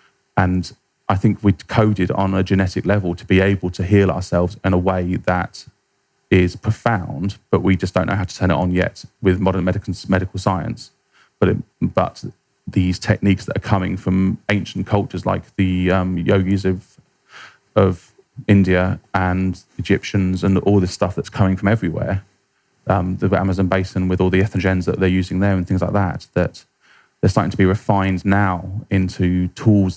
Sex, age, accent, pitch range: male, 20-39, British, 95-105 Hz